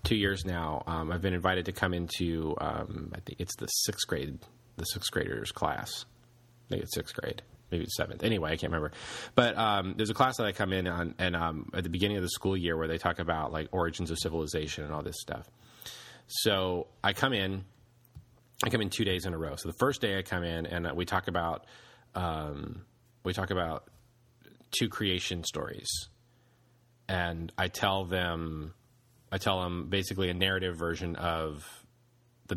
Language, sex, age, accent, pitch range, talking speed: English, male, 30-49, American, 85-110 Hz, 195 wpm